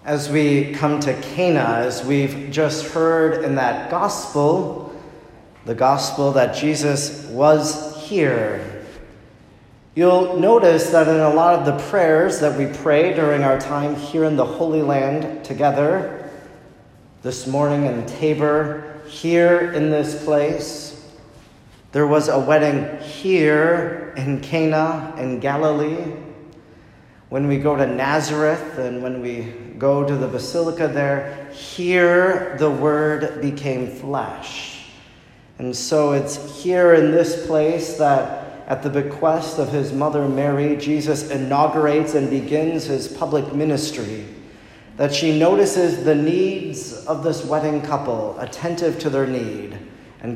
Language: English